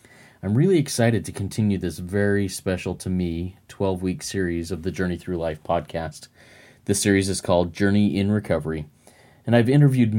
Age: 30-49